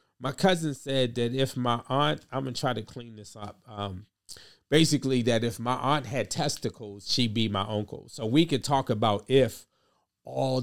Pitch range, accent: 105-130 Hz, American